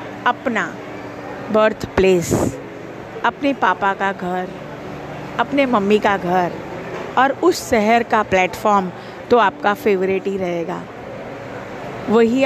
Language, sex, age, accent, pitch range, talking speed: Hindi, female, 50-69, native, 195-270 Hz, 105 wpm